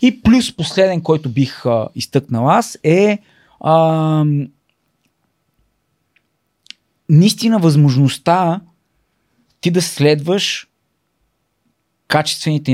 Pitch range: 125-150 Hz